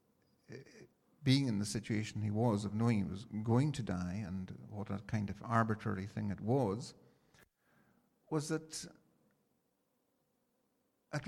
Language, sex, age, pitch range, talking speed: Italian, male, 50-69, 105-140 Hz, 135 wpm